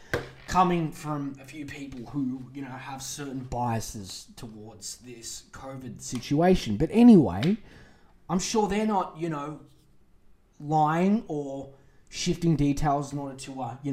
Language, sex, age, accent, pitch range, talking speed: English, male, 20-39, Australian, 145-205 Hz, 140 wpm